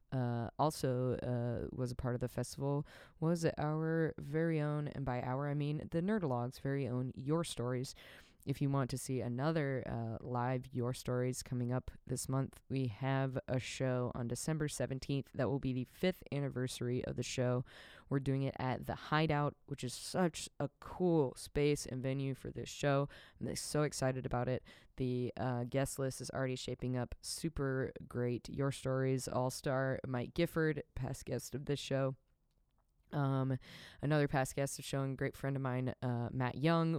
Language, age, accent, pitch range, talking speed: English, 20-39, American, 125-145 Hz, 175 wpm